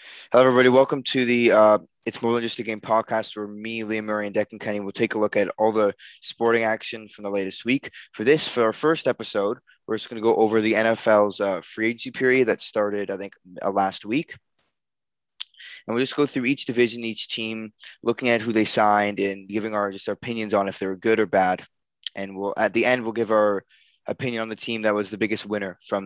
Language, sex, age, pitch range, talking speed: English, male, 20-39, 105-125 Hz, 235 wpm